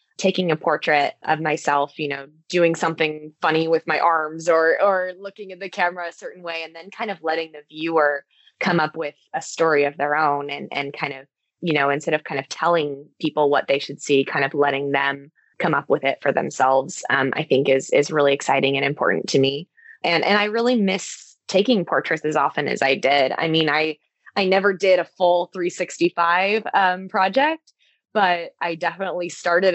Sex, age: female, 20-39